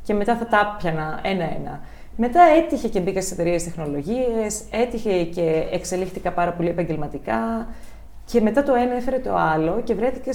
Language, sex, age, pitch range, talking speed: Greek, female, 20-39, 165-215 Hz, 160 wpm